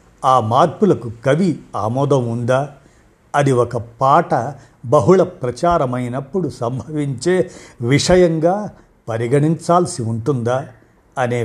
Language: Telugu